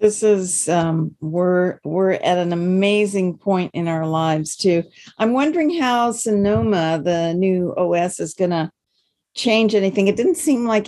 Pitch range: 170-210 Hz